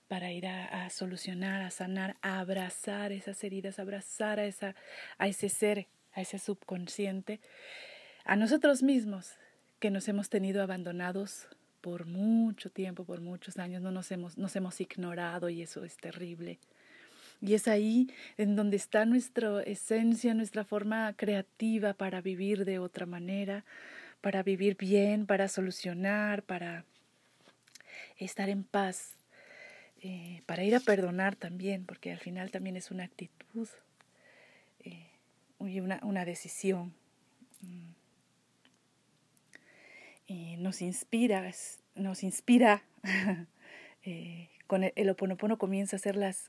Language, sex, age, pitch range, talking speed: Spanish, female, 30-49, 180-205 Hz, 130 wpm